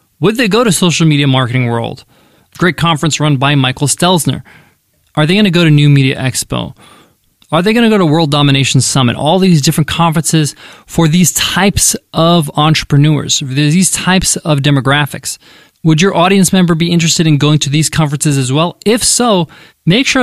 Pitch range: 140-185 Hz